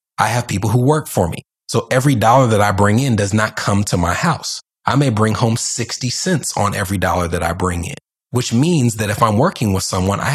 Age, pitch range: 30-49, 100-130 Hz